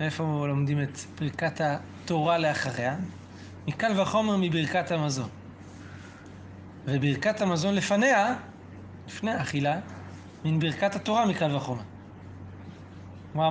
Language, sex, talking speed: Hebrew, male, 90 wpm